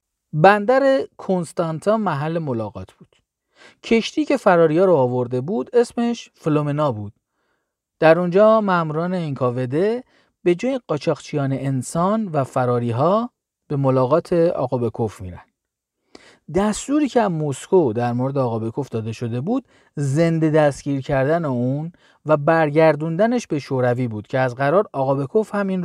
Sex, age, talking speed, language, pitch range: male, 40-59, 125 wpm, Persian, 135-215 Hz